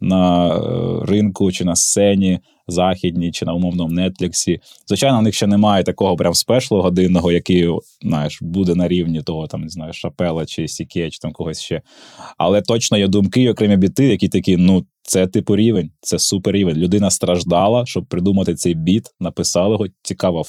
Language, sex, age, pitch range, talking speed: Ukrainian, male, 20-39, 90-105 Hz, 175 wpm